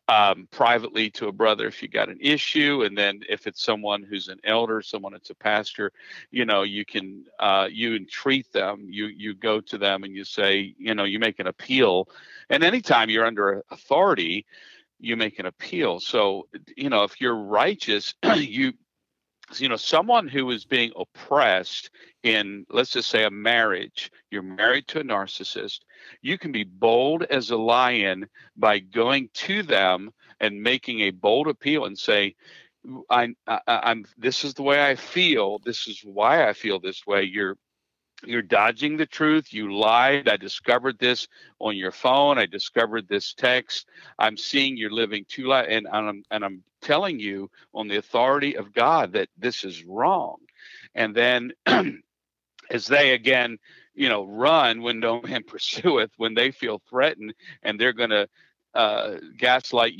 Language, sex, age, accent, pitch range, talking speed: English, male, 50-69, American, 105-125 Hz, 170 wpm